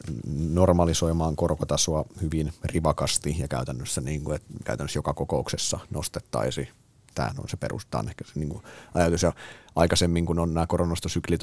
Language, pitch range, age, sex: Finnish, 80-95 Hz, 30-49, male